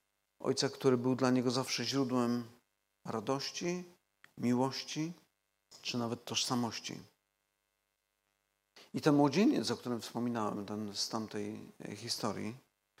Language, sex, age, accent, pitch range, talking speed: Polish, male, 50-69, native, 115-135 Hz, 95 wpm